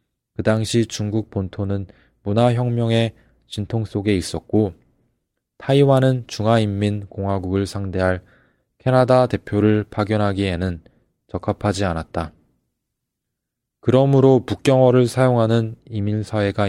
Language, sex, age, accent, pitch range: Korean, male, 20-39, native, 95-115 Hz